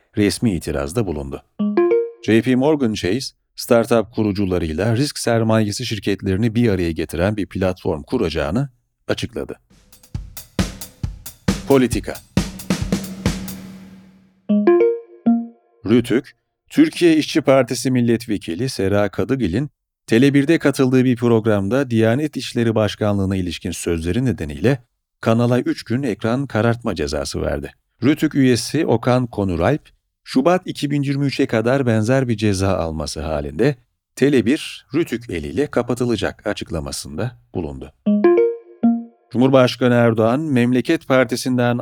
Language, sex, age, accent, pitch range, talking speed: Turkish, male, 40-59, native, 100-140 Hz, 95 wpm